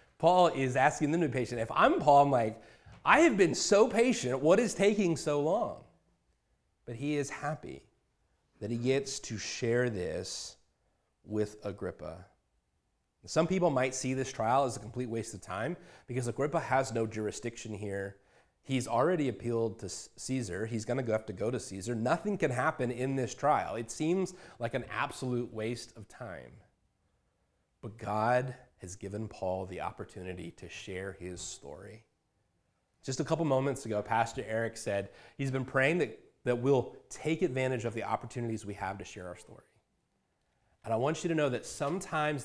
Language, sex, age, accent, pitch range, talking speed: English, male, 30-49, American, 105-135 Hz, 175 wpm